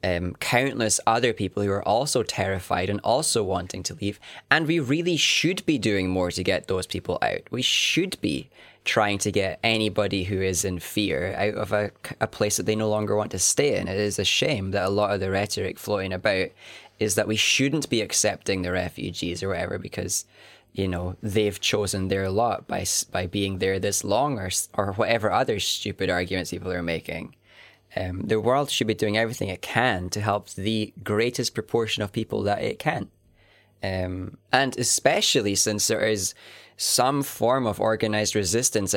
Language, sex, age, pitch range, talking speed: English, male, 10-29, 95-115 Hz, 190 wpm